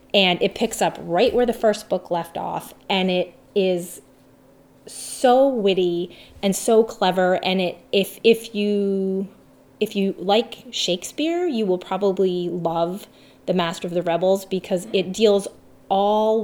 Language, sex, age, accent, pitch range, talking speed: English, female, 30-49, American, 175-210 Hz, 150 wpm